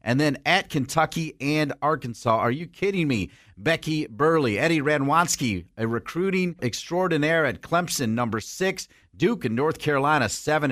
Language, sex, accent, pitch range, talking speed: English, male, American, 120-160 Hz, 145 wpm